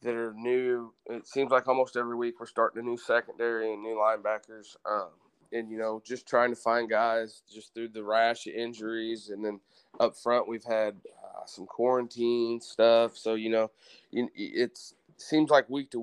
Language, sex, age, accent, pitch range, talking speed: English, male, 20-39, American, 110-120 Hz, 190 wpm